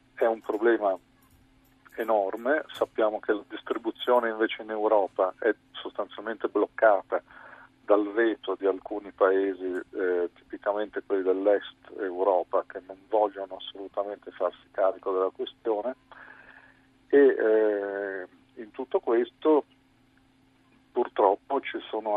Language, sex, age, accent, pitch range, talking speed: Italian, male, 50-69, native, 95-110 Hz, 110 wpm